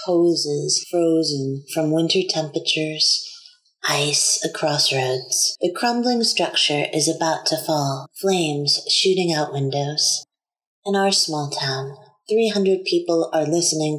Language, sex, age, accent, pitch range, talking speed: English, female, 30-49, American, 150-185 Hz, 115 wpm